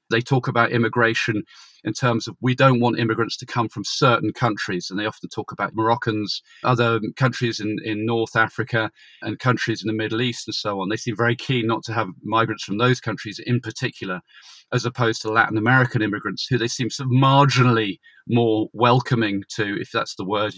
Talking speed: 200 wpm